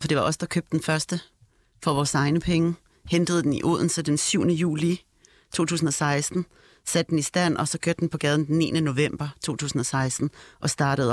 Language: Danish